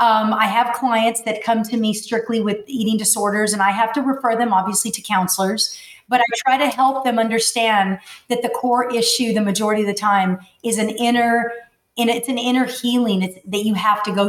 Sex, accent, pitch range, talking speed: female, American, 210-240 Hz, 205 wpm